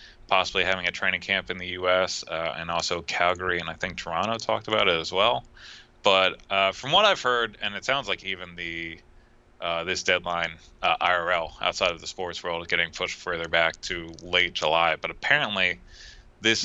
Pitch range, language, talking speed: 85-105 Hz, English, 200 wpm